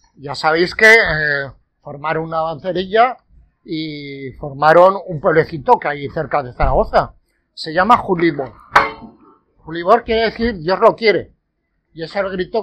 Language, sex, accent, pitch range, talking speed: English, male, Spanish, 160-215 Hz, 140 wpm